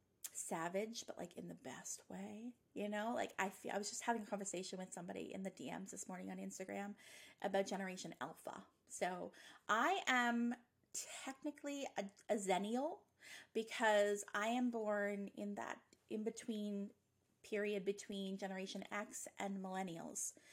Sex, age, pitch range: female, 20-39, 190-235 Hz